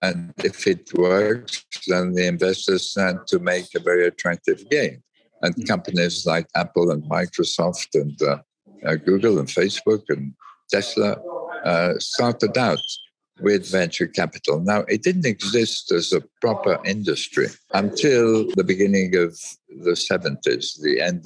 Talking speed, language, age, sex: 140 wpm, English, 60-79, male